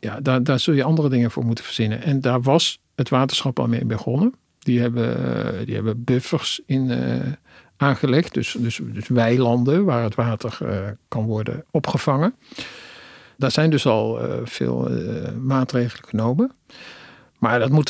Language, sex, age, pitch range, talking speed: Dutch, male, 50-69, 120-140 Hz, 165 wpm